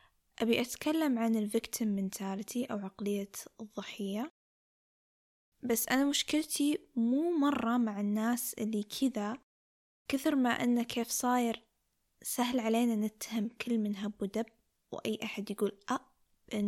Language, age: Arabic, 10-29